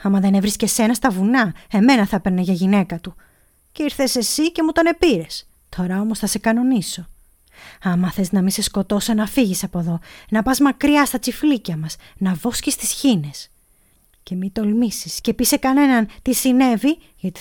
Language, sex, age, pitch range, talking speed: Greek, female, 20-39, 180-230 Hz, 185 wpm